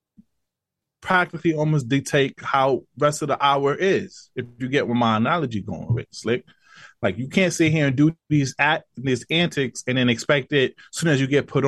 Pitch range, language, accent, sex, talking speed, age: 110-135 Hz, English, American, male, 200 wpm, 20-39